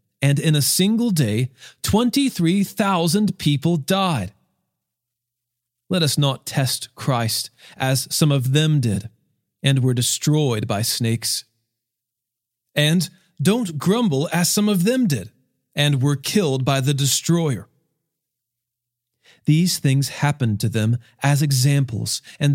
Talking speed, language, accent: 120 wpm, English, American